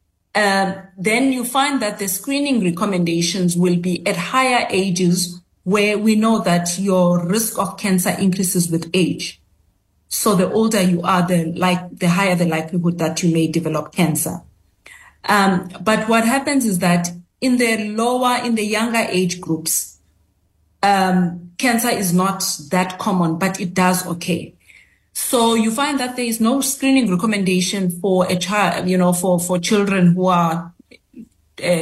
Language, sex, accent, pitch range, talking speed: English, female, South African, 175-215 Hz, 155 wpm